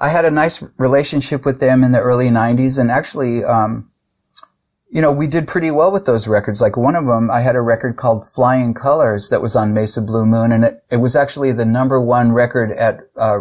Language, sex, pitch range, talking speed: English, male, 110-130 Hz, 230 wpm